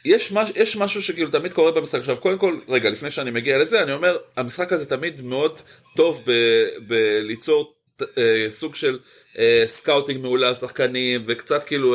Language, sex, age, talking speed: Hebrew, male, 30-49, 170 wpm